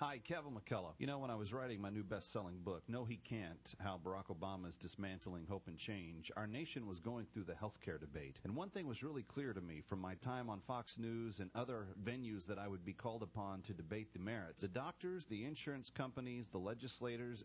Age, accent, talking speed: 40-59, American, 225 wpm